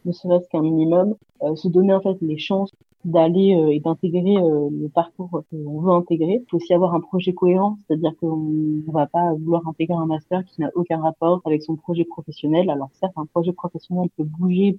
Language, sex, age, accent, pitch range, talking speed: French, female, 30-49, French, 160-185 Hz, 210 wpm